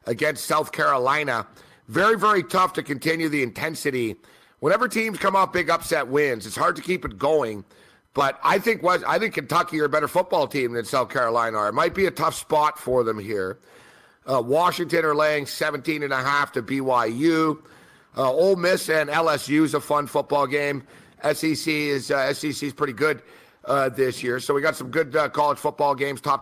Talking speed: 200 wpm